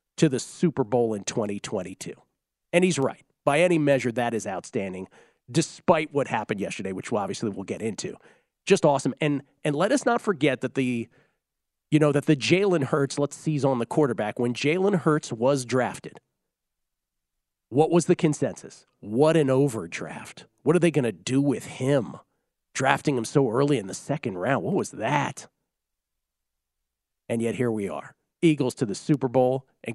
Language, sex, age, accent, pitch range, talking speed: English, male, 40-59, American, 120-160 Hz, 175 wpm